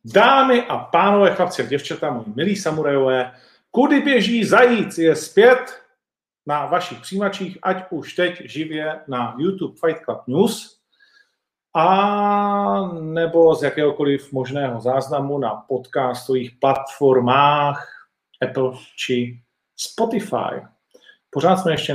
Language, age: Czech, 40-59